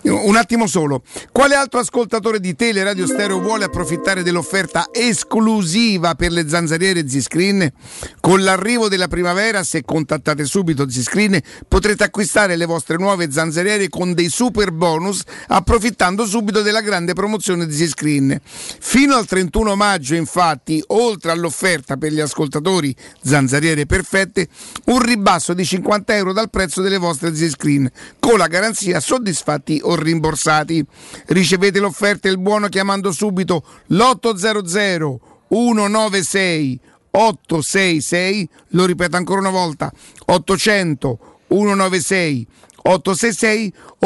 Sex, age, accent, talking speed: male, 50-69, native, 115 wpm